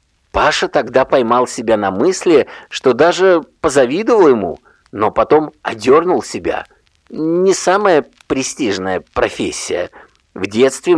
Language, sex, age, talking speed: Russian, male, 50-69, 110 wpm